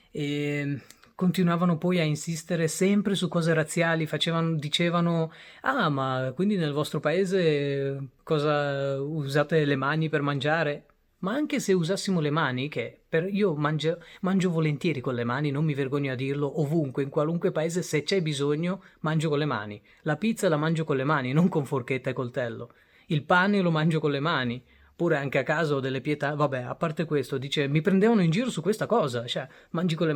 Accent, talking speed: native, 185 wpm